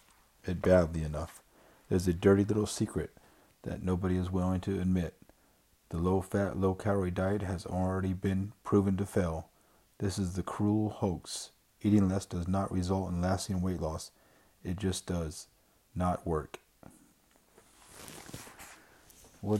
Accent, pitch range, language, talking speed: American, 90-100 Hz, English, 130 wpm